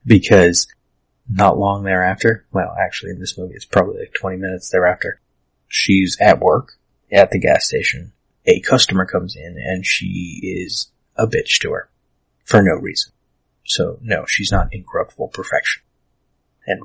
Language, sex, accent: English, male, American